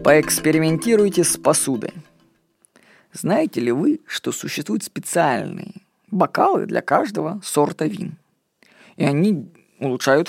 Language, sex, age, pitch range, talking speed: Russian, female, 20-39, 155-200 Hz, 100 wpm